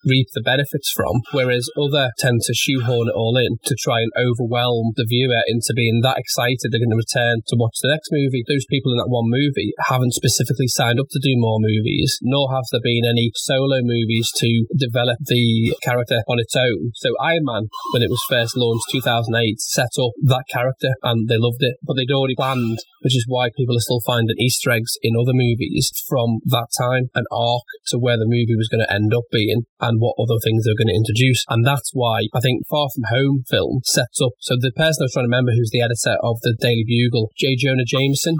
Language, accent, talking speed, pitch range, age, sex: English, British, 225 wpm, 115-135 Hz, 20-39, male